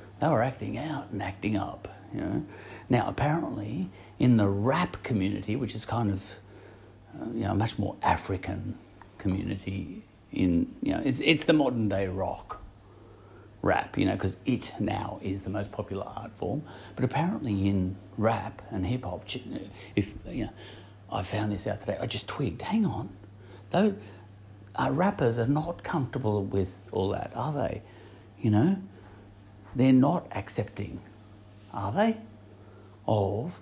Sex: male